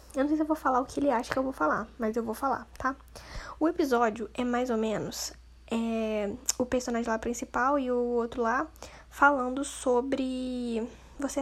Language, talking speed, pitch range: Portuguese, 195 wpm, 230-280 Hz